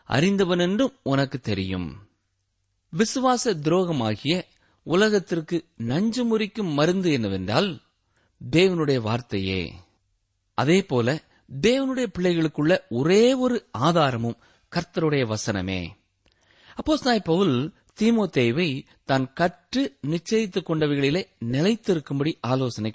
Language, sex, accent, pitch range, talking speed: Tamil, male, native, 110-180 Hz, 80 wpm